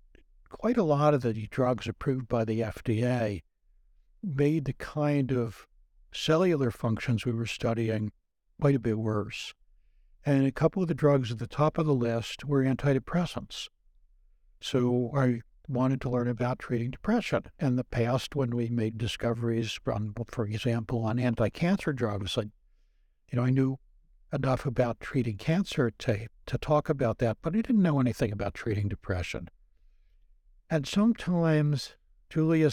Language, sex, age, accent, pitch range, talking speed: English, male, 60-79, American, 115-145 Hz, 150 wpm